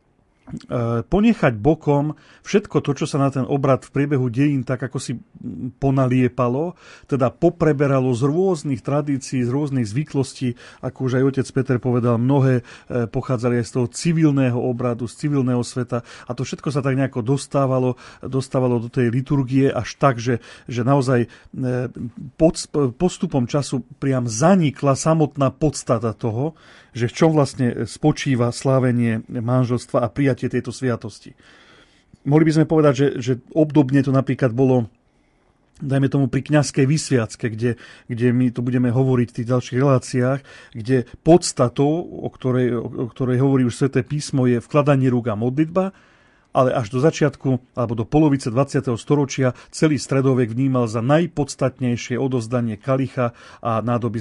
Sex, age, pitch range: male, 40-59, 120-140 Hz